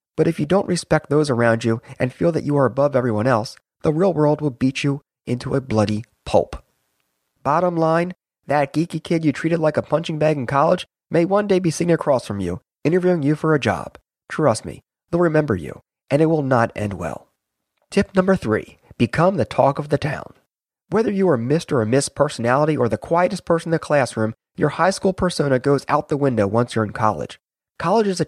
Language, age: English, 30-49